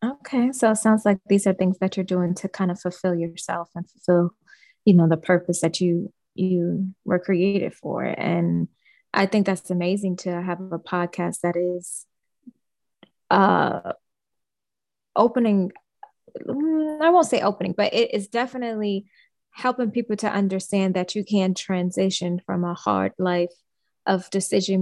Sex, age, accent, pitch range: female, 20-39, American, 175-200 Hz